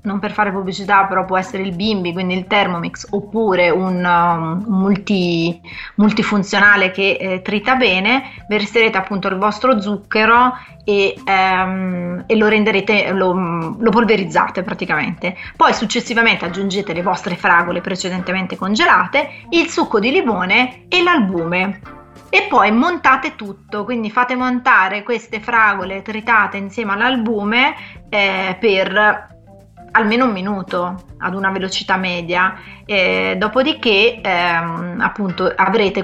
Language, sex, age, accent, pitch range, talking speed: Italian, female, 30-49, native, 180-220 Hz, 125 wpm